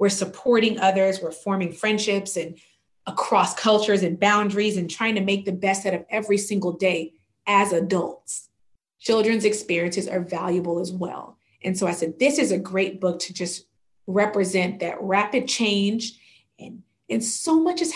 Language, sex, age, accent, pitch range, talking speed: English, female, 30-49, American, 180-210 Hz, 165 wpm